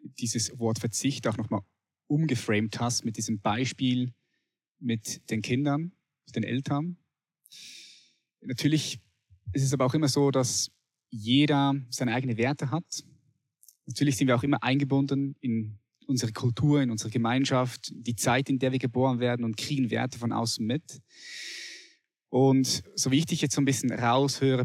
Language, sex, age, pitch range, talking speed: German, male, 20-39, 115-145 Hz, 155 wpm